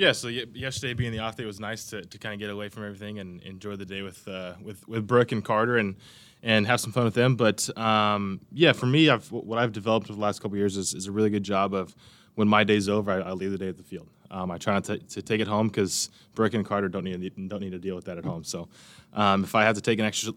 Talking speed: 305 wpm